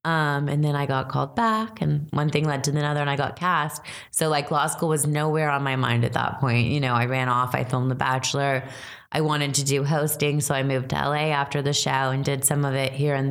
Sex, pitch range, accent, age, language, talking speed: female, 135-155 Hz, American, 20-39, English, 260 wpm